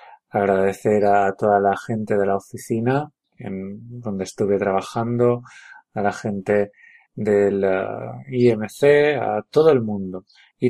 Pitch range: 100-130 Hz